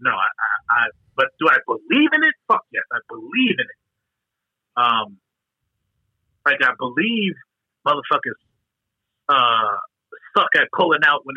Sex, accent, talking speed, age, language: male, American, 145 wpm, 30-49, English